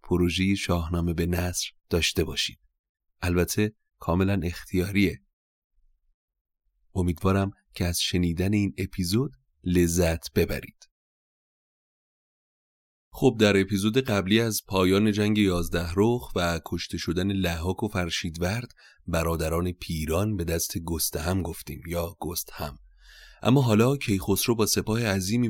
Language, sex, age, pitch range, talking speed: Persian, male, 30-49, 85-105 Hz, 110 wpm